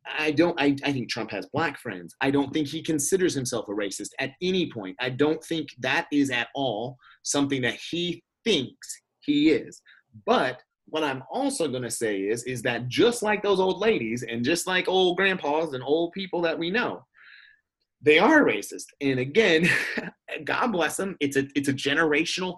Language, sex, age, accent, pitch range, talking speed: English, male, 30-49, American, 130-175 Hz, 190 wpm